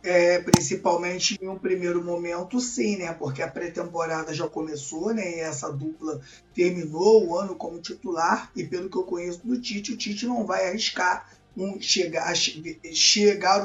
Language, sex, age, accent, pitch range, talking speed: Portuguese, male, 20-39, Brazilian, 160-200 Hz, 165 wpm